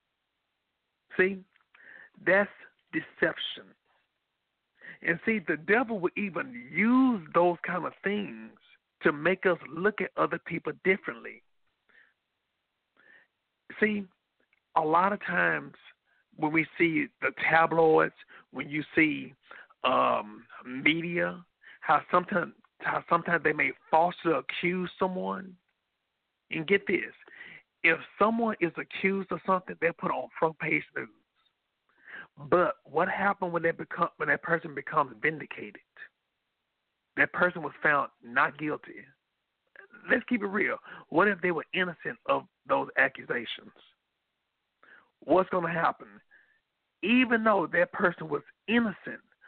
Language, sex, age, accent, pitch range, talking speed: English, male, 50-69, American, 165-210 Hz, 120 wpm